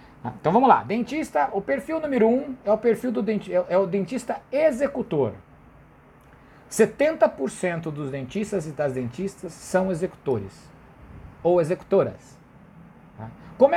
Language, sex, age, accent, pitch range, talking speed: Portuguese, male, 60-79, Brazilian, 145-215 Hz, 120 wpm